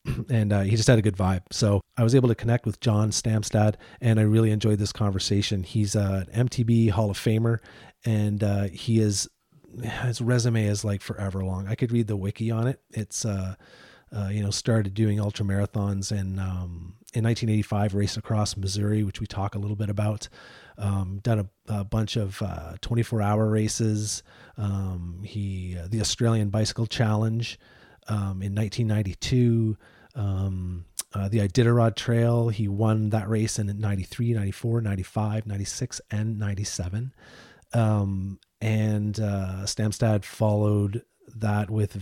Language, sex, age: English, male, 30-49